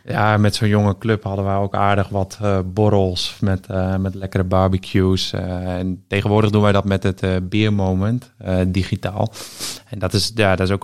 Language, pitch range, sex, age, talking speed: Dutch, 95-105 Hz, male, 20-39, 205 wpm